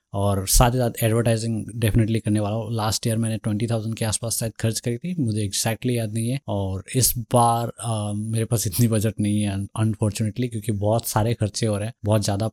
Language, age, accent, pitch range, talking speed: Hindi, 20-39, native, 105-115 Hz, 215 wpm